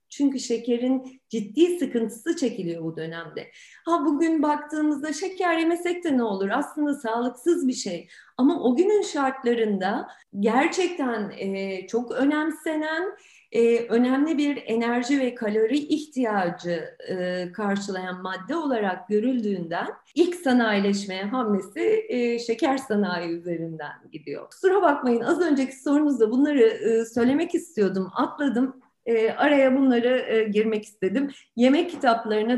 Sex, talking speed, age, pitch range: female, 105 wpm, 40-59, 195-290 Hz